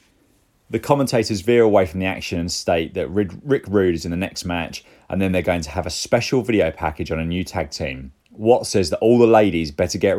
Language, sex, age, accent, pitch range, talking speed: English, male, 30-49, British, 80-105 Hz, 235 wpm